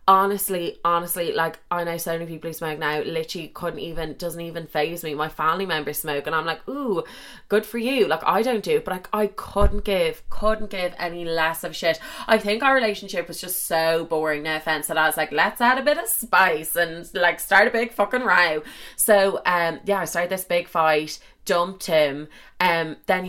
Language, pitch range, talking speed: English, 160-205 Hz, 215 wpm